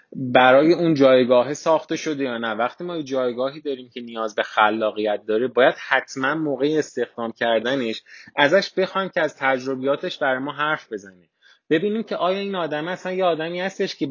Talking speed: 175 wpm